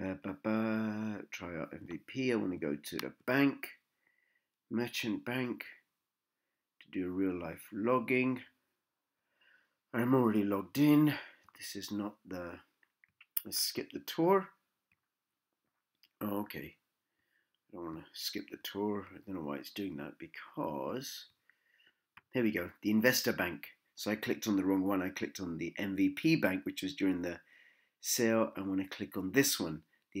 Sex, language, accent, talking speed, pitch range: male, English, British, 155 wpm, 100-130 Hz